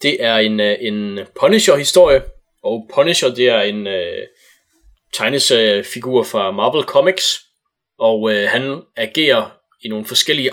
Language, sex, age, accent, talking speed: Danish, male, 20-39, native, 125 wpm